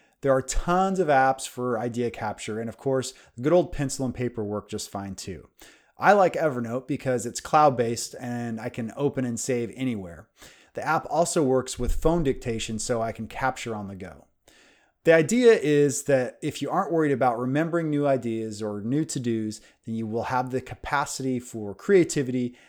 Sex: male